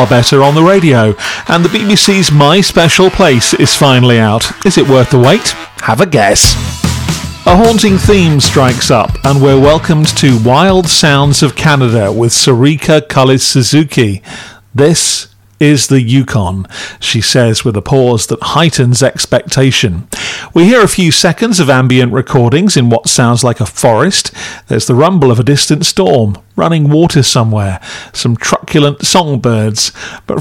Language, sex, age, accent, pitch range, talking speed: English, male, 40-59, British, 125-155 Hz, 155 wpm